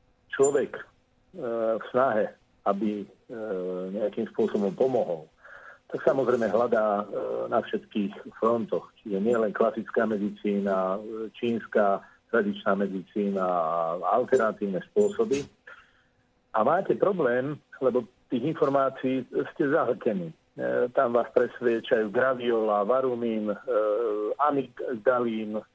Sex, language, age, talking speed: male, Slovak, 50-69, 100 wpm